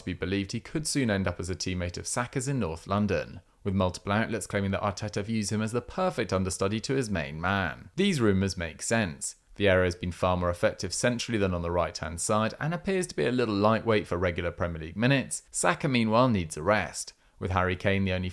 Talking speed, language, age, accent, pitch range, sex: 225 wpm, English, 30-49, British, 90-120 Hz, male